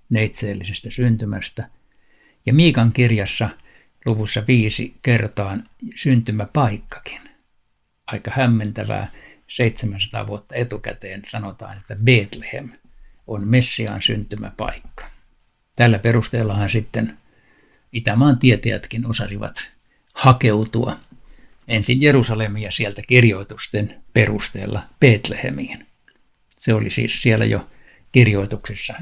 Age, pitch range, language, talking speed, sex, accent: 60-79, 105-120 Hz, Finnish, 80 wpm, male, native